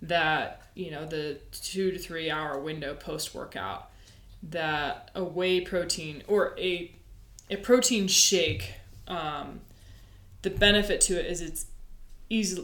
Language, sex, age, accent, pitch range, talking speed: English, female, 20-39, American, 115-185 Hz, 130 wpm